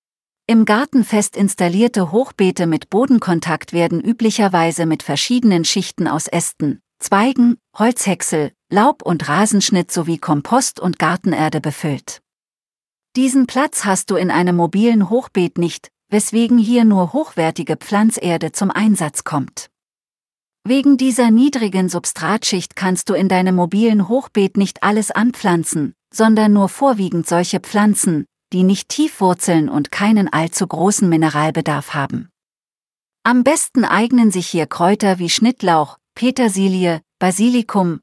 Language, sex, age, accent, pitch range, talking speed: German, female, 40-59, German, 165-220 Hz, 125 wpm